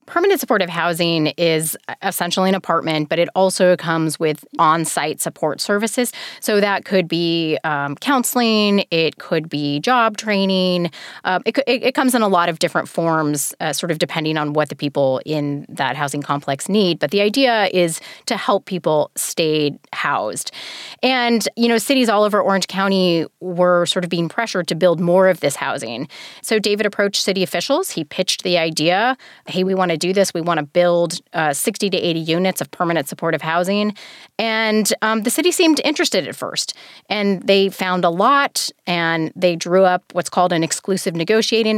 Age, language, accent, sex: 20-39, English, American, female